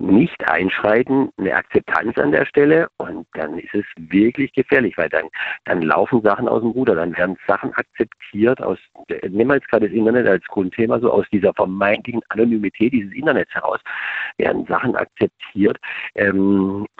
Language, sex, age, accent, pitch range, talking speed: German, male, 50-69, German, 100-120 Hz, 160 wpm